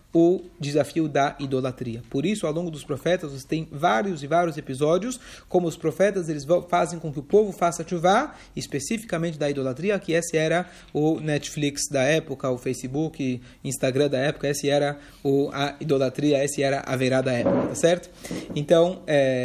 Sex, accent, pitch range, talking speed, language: male, Brazilian, 145-190 Hz, 175 wpm, Portuguese